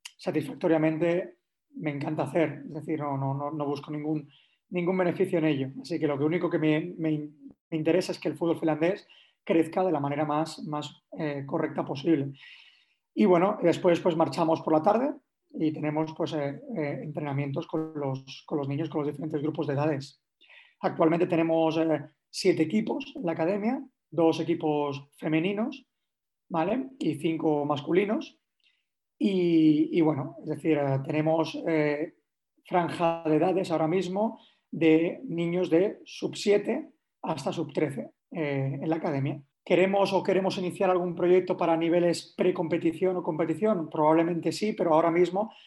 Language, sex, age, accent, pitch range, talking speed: Spanish, male, 30-49, Spanish, 150-180 Hz, 145 wpm